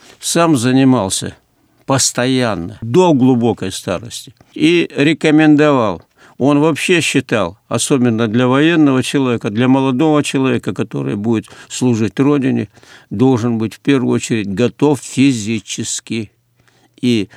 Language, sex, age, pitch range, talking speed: Russian, male, 50-69, 115-145 Hz, 105 wpm